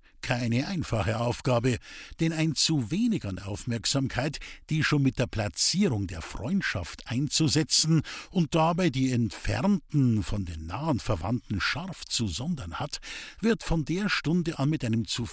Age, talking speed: 50-69, 145 wpm